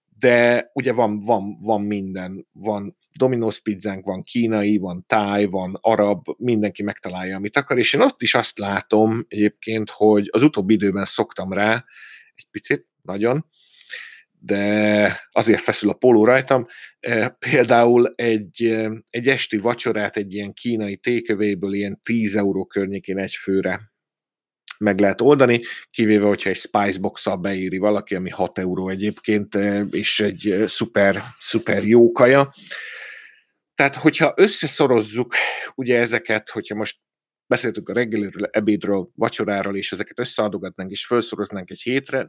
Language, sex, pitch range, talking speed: Hungarian, male, 100-120 Hz, 130 wpm